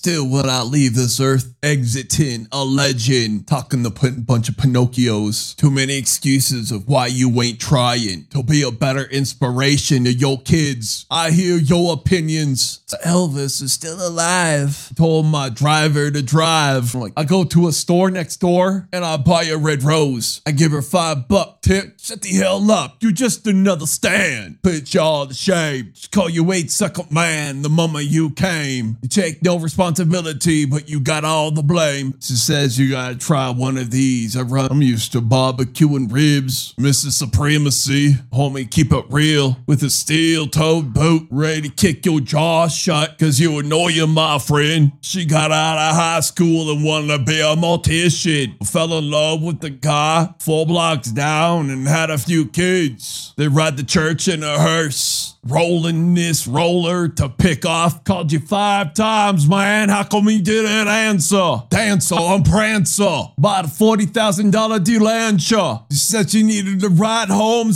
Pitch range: 135-175 Hz